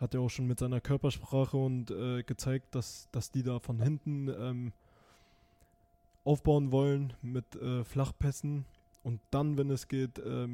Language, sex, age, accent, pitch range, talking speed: German, male, 20-39, German, 120-140 Hz, 160 wpm